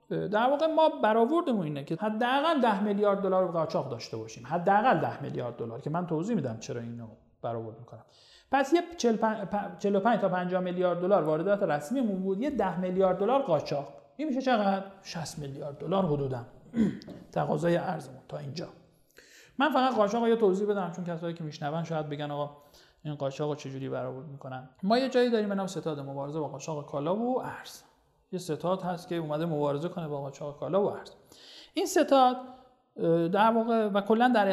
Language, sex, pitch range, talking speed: Persian, male, 160-230 Hz, 175 wpm